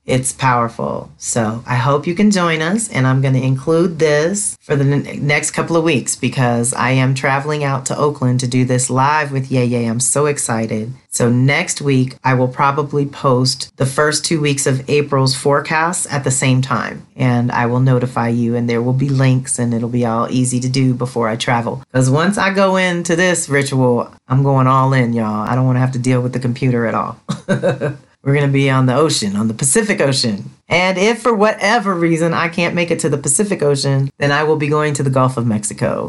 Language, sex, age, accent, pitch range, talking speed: English, female, 40-59, American, 120-145 Hz, 225 wpm